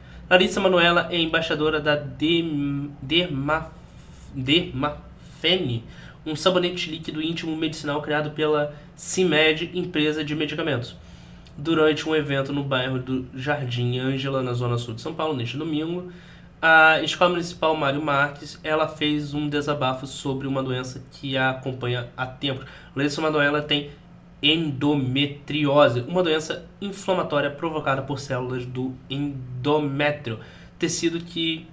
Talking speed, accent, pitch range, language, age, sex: 120 wpm, Brazilian, 130-160 Hz, Portuguese, 20-39, male